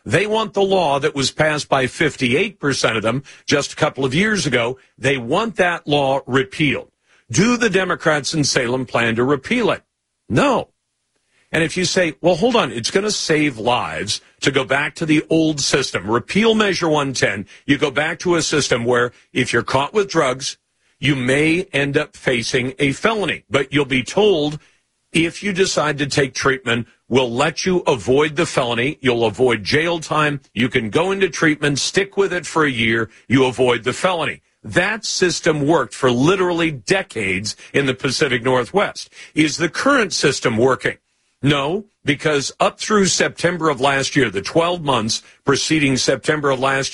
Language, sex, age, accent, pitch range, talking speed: English, male, 50-69, American, 130-175 Hz, 175 wpm